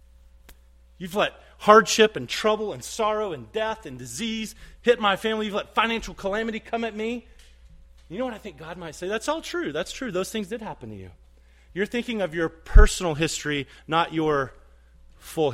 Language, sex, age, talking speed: English, male, 30-49, 190 wpm